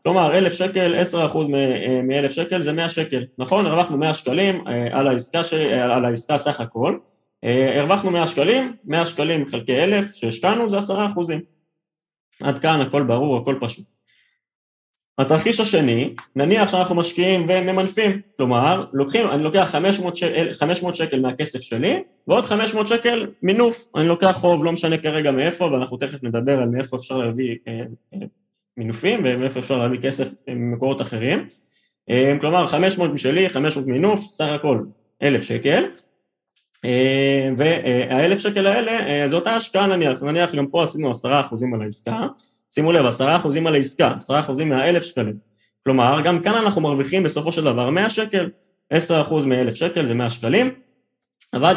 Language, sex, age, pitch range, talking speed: Hebrew, male, 20-39, 130-185 Hz, 145 wpm